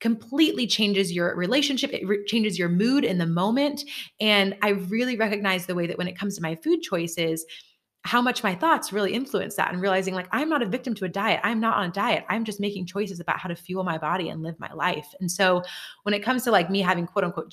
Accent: American